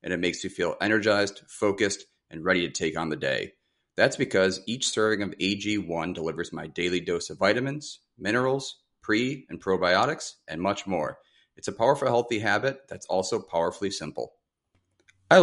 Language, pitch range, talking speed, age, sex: English, 85-105 Hz, 165 wpm, 30-49, male